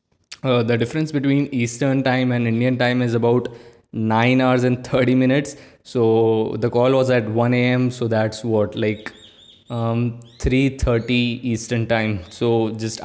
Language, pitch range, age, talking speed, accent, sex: Hindi, 115-130 Hz, 20-39, 150 wpm, native, male